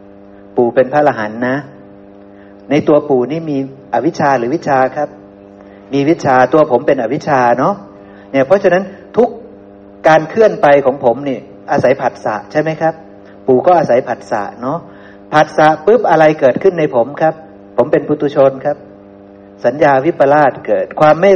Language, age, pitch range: Thai, 60-79, 100-170 Hz